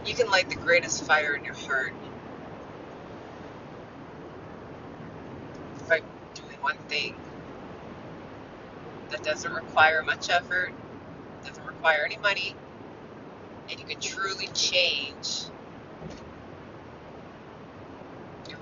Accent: American